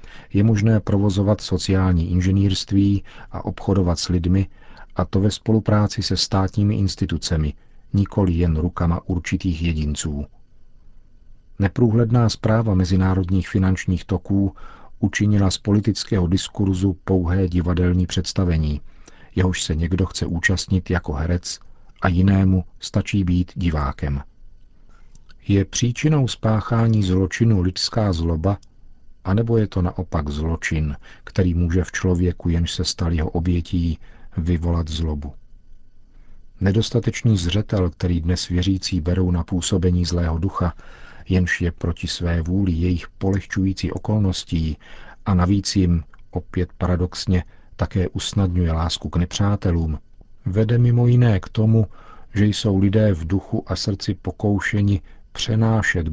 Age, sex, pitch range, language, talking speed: 50-69, male, 90-100 Hz, Czech, 120 wpm